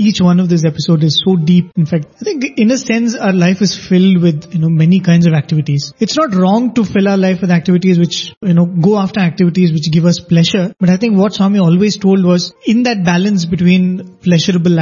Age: 30-49